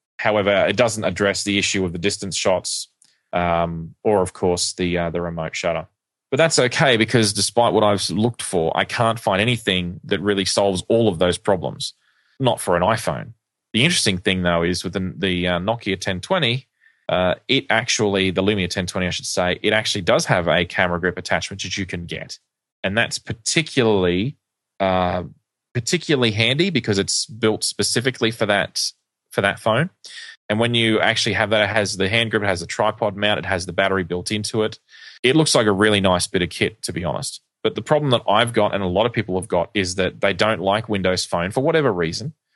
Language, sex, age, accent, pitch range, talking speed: English, male, 20-39, Australian, 90-115 Hz, 210 wpm